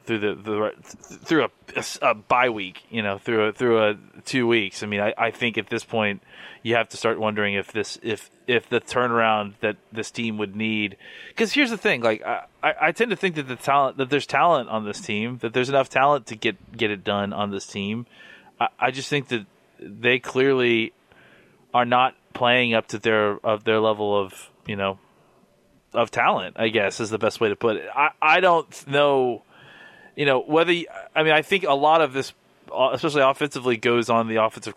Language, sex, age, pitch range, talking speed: English, male, 30-49, 110-130 Hz, 215 wpm